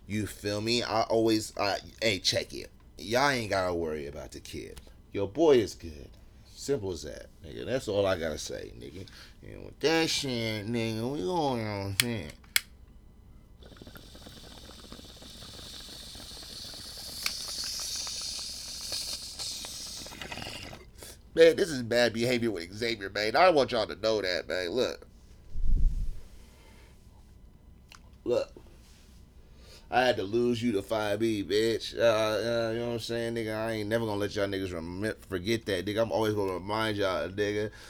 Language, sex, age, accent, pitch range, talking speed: English, male, 30-49, American, 90-110 Hz, 140 wpm